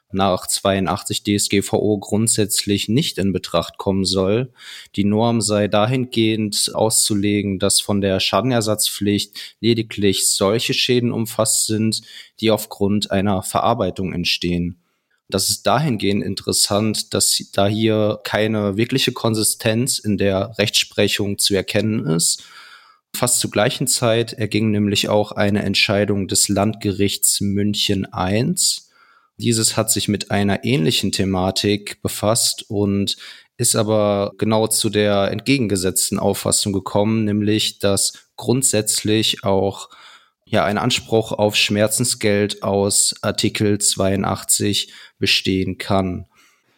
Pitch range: 100-110 Hz